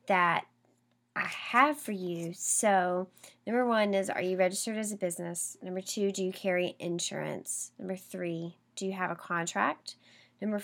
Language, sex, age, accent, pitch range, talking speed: English, female, 10-29, American, 180-215 Hz, 165 wpm